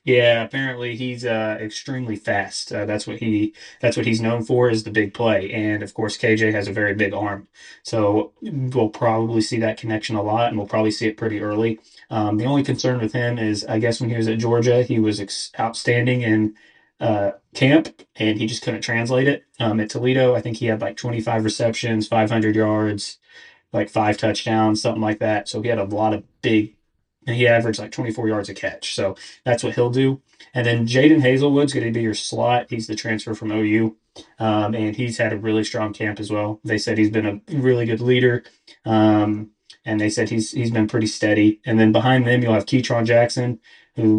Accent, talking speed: American, 215 wpm